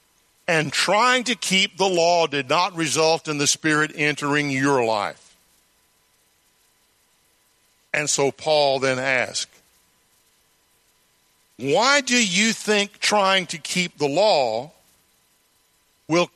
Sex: male